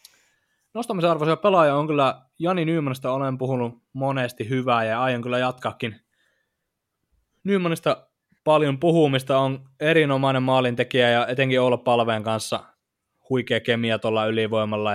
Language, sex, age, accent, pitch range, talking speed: Finnish, male, 20-39, native, 110-135 Hz, 110 wpm